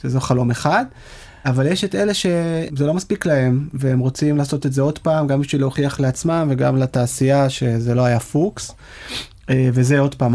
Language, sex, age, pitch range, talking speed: Hebrew, male, 30-49, 125-150 Hz, 180 wpm